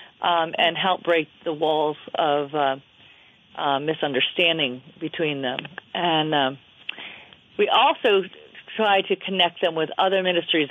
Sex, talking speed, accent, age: female, 130 wpm, American, 40-59